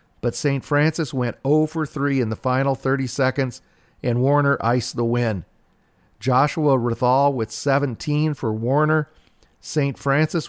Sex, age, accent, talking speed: male, 40-59, American, 145 wpm